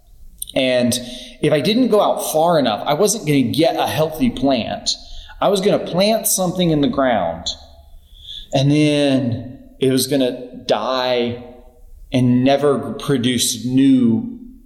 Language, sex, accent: English, male, American